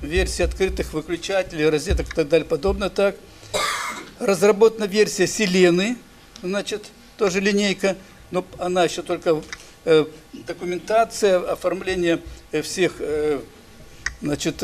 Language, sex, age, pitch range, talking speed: Russian, male, 60-79, 175-215 Hz, 105 wpm